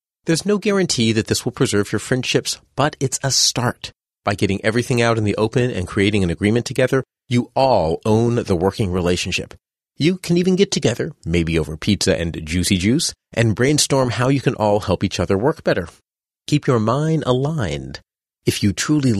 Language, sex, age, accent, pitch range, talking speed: English, male, 30-49, American, 95-140 Hz, 190 wpm